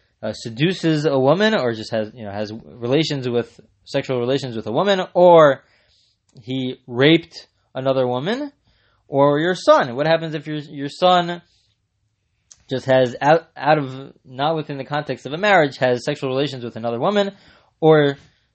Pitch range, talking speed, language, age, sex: 120-165 Hz, 160 wpm, English, 20-39, male